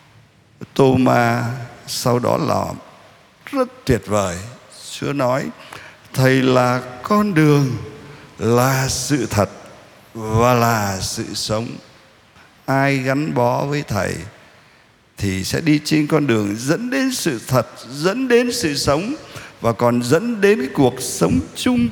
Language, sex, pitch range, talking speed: Vietnamese, male, 110-160 Hz, 130 wpm